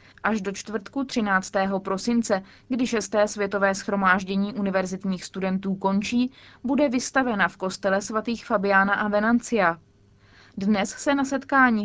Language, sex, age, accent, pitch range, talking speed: Czech, female, 20-39, native, 190-225 Hz, 120 wpm